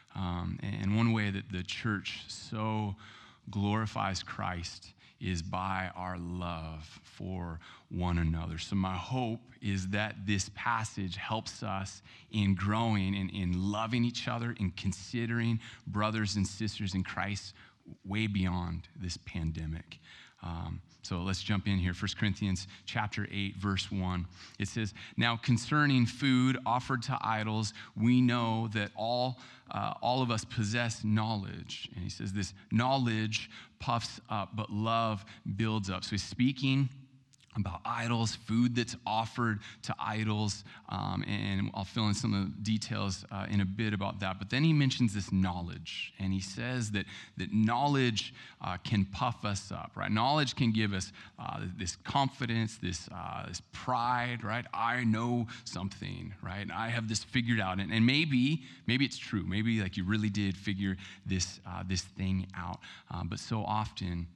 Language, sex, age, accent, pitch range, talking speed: English, male, 30-49, American, 95-115 Hz, 160 wpm